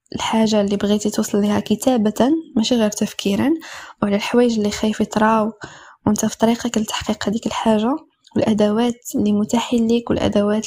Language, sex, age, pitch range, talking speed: Arabic, female, 10-29, 215-255 Hz, 140 wpm